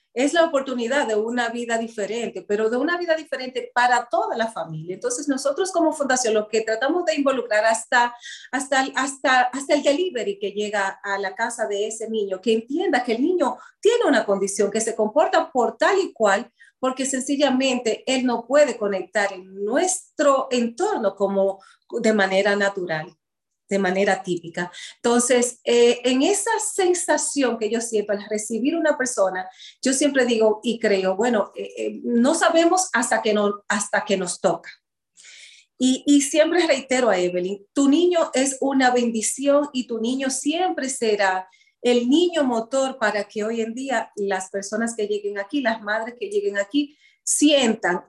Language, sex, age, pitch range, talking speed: Spanish, female, 40-59, 205-280 Hz, 165 wpm